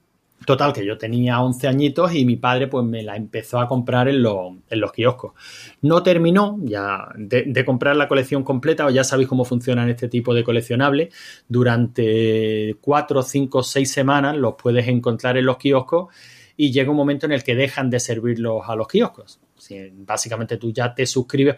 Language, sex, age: Spanish, male, 30-49